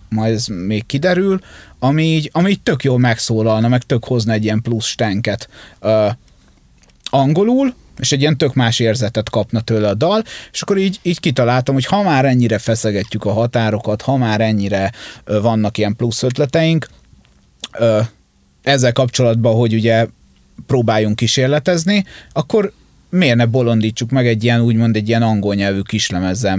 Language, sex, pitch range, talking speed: Hungarian, male, 105-130 Hz, 160 wpm